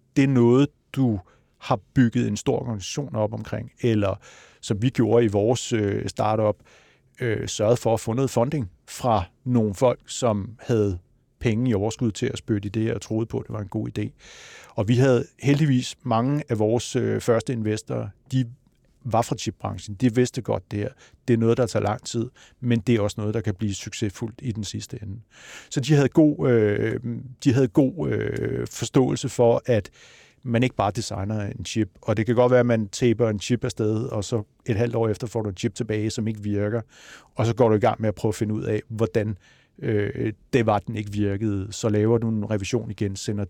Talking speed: 215 wpm